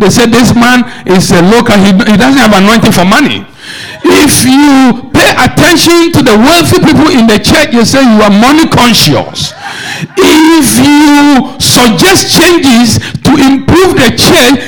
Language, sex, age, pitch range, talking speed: English, male, 60-79, 225-305 Hz, 155 wpm